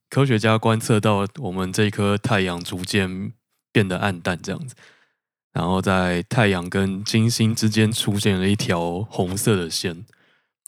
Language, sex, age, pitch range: Chinese, male, 20-39, 95-110 Hz